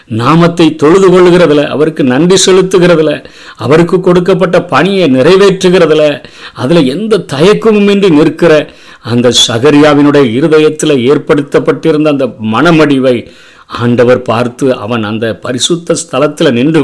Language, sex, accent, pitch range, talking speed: Tamil, male, native, 120-150 Hz, 95 wpm